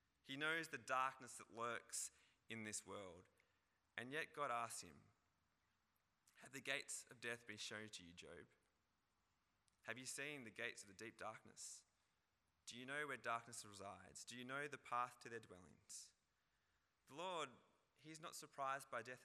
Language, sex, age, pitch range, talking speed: English, male, 20-39, 110-155 Hz, 170 wpm